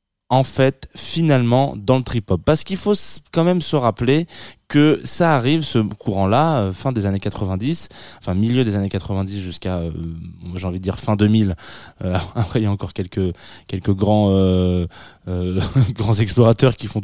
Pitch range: 95-120 Hz